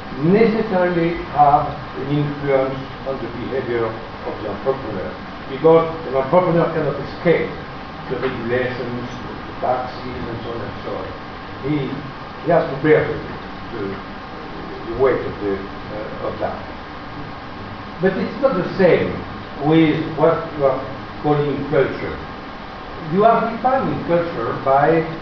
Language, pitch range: Italian, 130-175 Hz